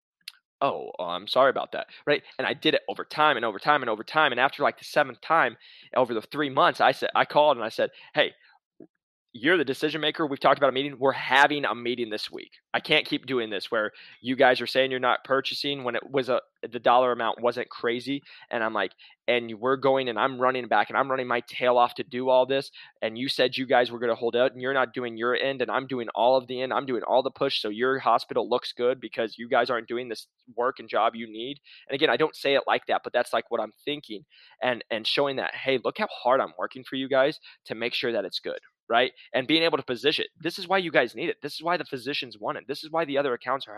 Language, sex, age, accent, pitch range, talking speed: English, male, 20-39, American, 120-145 Hz, 270 wpm